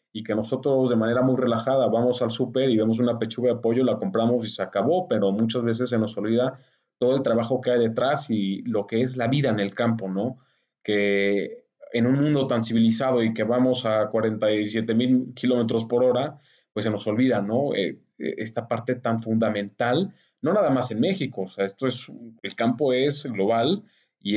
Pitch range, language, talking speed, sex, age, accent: 110-125 Hz, Spanish, 200 wpm, male, 30-49, Mexican